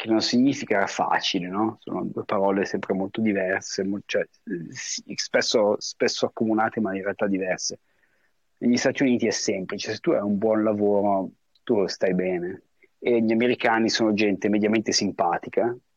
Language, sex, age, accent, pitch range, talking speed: Italian, male, 30-49, native, 95-110 Hz, 150 wpm